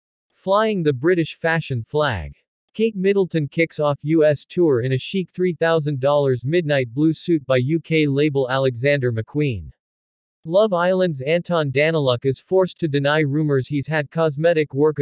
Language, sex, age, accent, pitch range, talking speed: French, male, 40-59, American, 135-170 Hz, 145 wpm